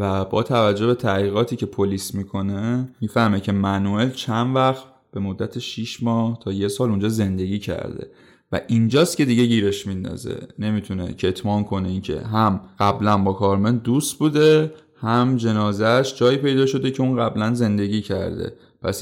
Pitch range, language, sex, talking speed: 100-125 Hz, Persian, male, 160 wpm